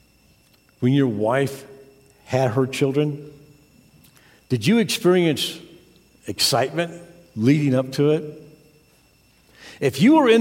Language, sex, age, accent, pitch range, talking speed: English, male, 50-69, American, 115-155 Hz, 105 wpm